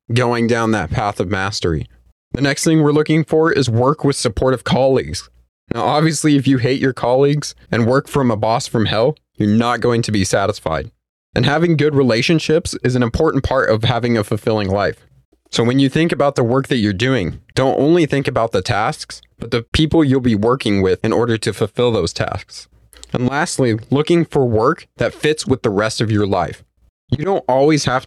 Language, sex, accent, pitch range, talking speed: English, male, American, 110-140 Hz, 205 wpm